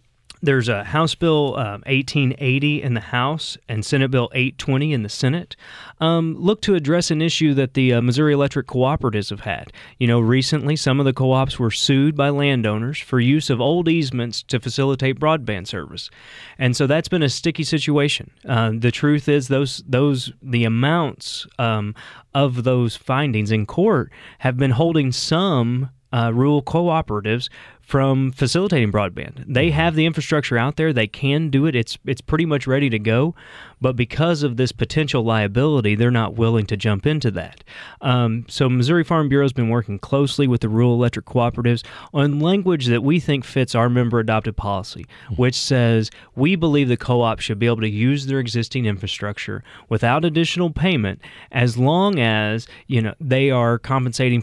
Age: 30-49